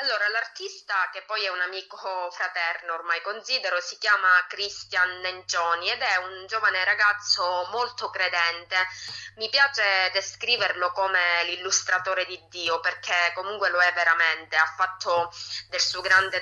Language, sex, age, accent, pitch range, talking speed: Italian, female, 20-39, native, 175-200 Hz, 140 wpm